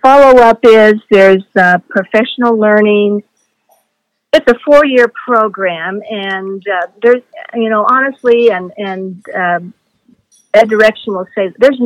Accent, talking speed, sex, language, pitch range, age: American, 120 wpm, female, English, 180-225 Hz, 50-69